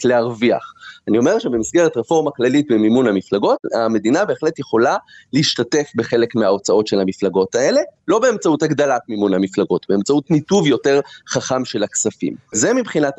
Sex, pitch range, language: male, 120-190 Hz, Hebrew